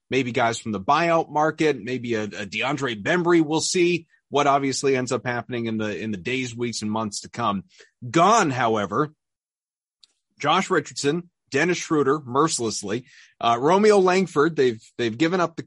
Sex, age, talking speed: male, 30-49, 165 wpm